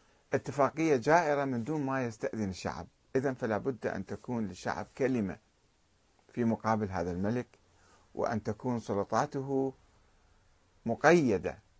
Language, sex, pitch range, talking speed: Arabic, male, 105-135 Hz, 110 wpm